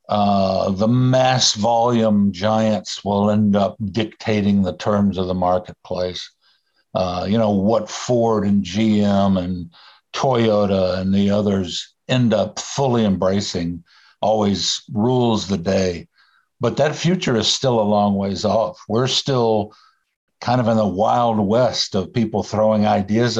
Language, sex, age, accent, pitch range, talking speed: English, male, 60-79, American, 105-125 Hz, 140 wpm